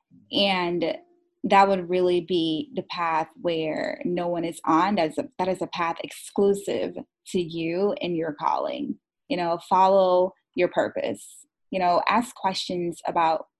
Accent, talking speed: American, 150 wpm